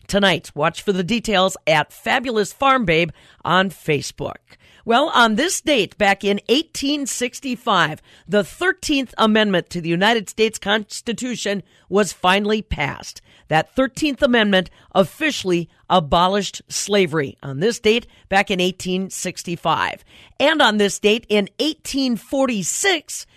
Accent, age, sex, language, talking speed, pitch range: American, 50-69, female, English, 120 wpm, 175-225 Hz